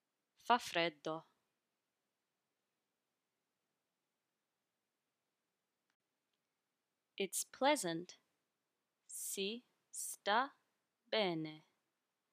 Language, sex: English, female